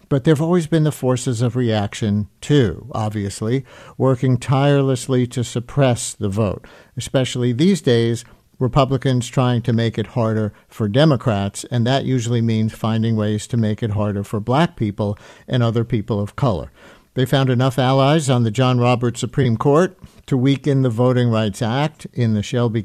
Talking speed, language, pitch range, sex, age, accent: 170 wpm, English, 110-135 Hz, male, 50-69, American